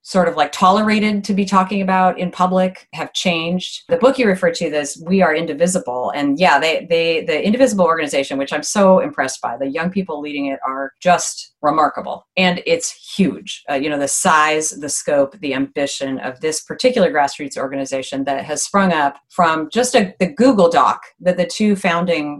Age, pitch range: 30-49, 150-200 Hz